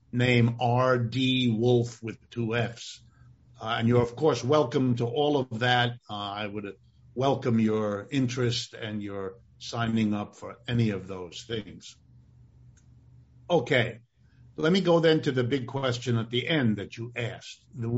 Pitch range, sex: 115-145 Hz, male